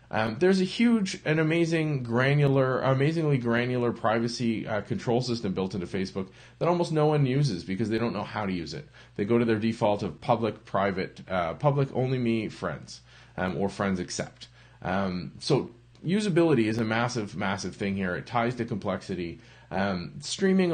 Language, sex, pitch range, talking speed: English, male, 110-145 Hz, 175 wpm